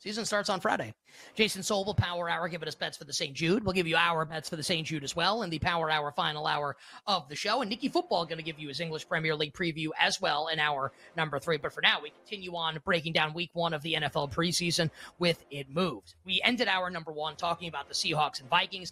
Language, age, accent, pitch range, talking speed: English, 30-49, American, 160-195 Hz, 255 wpm